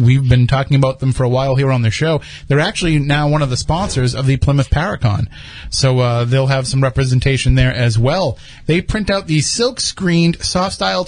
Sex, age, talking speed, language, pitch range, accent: male, 30-49, 205 wpm, English, 130-165 Hz, American